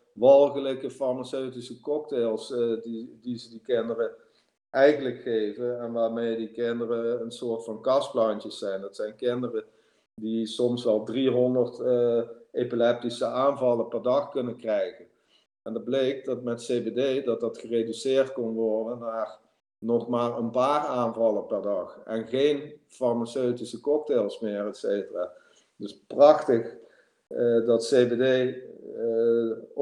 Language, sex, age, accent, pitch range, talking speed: Dutch, male, 50-69, Dutch, 115-145 Hz, 135 wpm